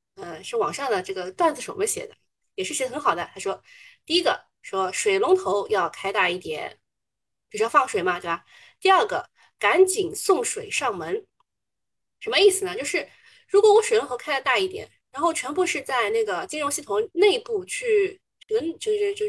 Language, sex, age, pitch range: Chinese, female, 20-39, 330-435 Hz